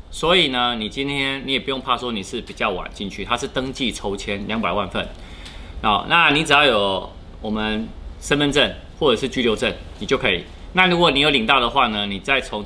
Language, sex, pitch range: Chinese, male, 95-135 Hz